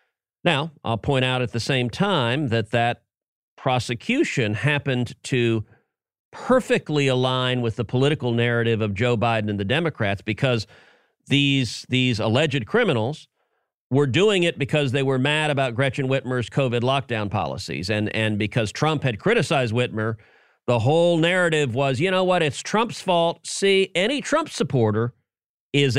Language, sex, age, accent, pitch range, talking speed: English, male, 40-59, American, 115-155 Hz, 150 wpm